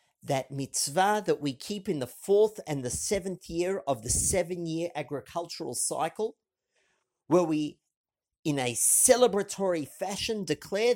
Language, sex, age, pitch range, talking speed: English, male, 50-69, 160-220 Hz, 130 wpm